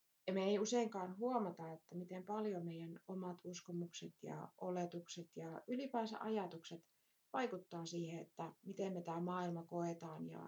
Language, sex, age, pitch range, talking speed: Finnish, female, 30-49, 165-200 Hz, 145 wpm